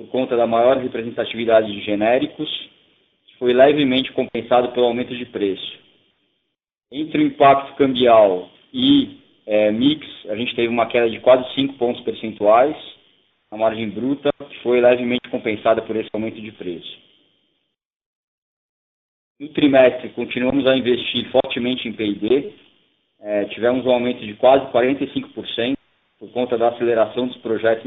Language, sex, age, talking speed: Portuguese, male, 20-39, 135 wpm